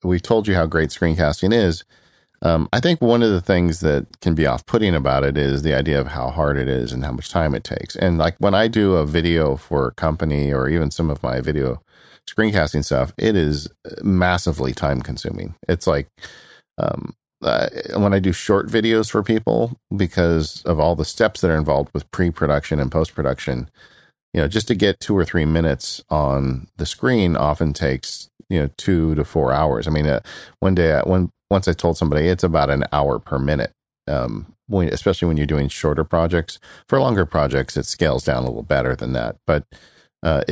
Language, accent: English, American